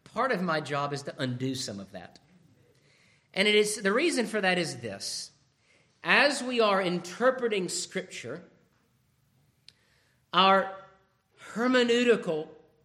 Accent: American